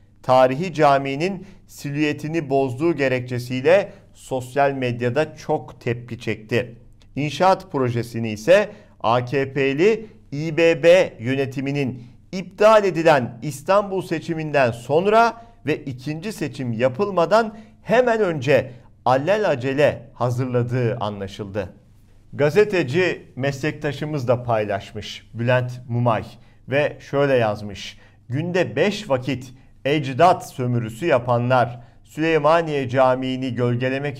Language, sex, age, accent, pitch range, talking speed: Turkish, male, 50-69, native, 120-155 Hz, 85 wpm